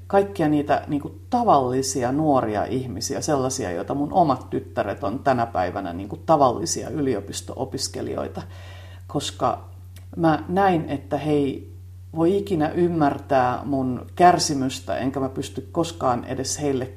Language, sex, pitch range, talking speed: Finnish, female, 95-145 Hz, 125 wpm